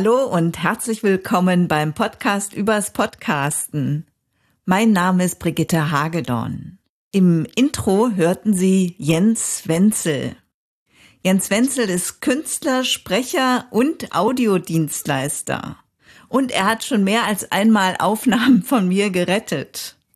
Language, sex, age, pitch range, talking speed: German, female, 50-69, 170-225 Hz, 110 wpm